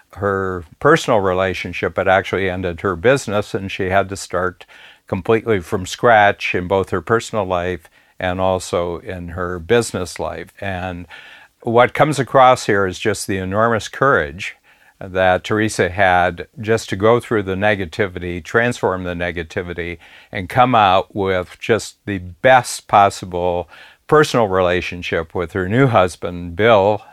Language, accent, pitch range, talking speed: English, American, 90-105 Hz, 140 wpm